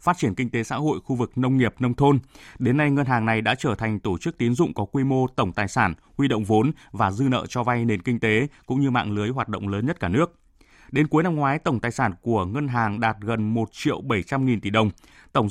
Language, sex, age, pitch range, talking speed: Vietnamese, male, 20-39, 115-140 Hz, 270 wpm